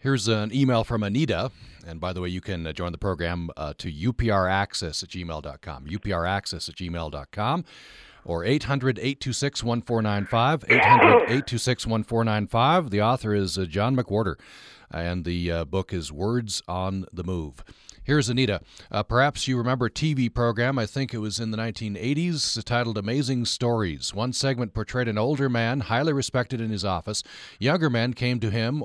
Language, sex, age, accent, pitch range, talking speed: English, male, 40-59, American, 100-125 Hz, 155 wpm